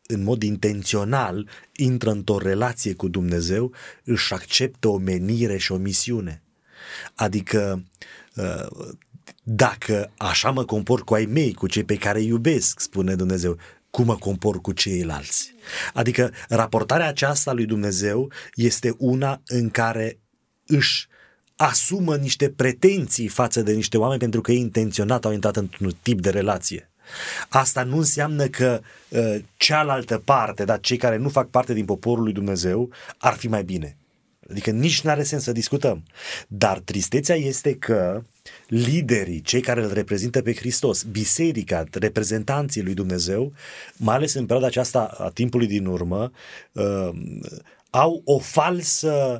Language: Romanian